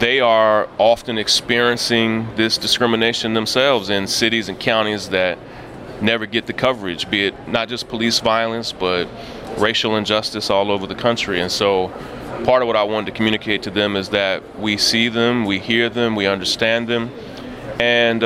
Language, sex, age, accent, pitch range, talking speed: English, male, 30-49, American, 105-120 Hz, 170 wpm